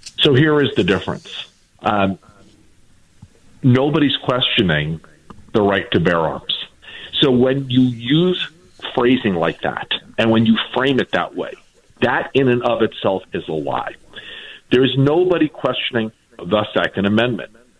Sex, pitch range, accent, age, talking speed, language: male, 100-135 Hz, American, 50-69, 140 wpm, English